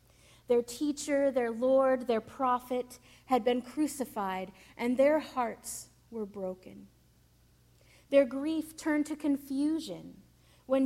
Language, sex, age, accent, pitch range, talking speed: English, female, 30-49, American, 220-275 Hz, 110 wpm